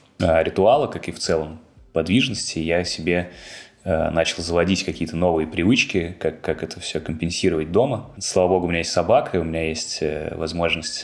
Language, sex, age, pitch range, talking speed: Russian, male, 20-39, 80-90 Hz, 170 wpm